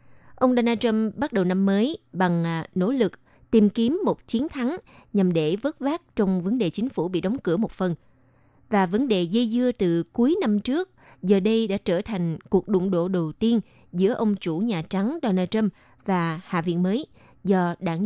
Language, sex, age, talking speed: Vietnamese, female, 20-39, 205 wpm